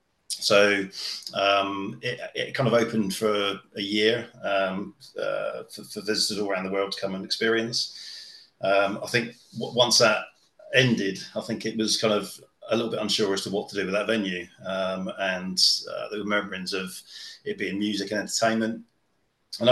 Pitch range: 100-115 Hz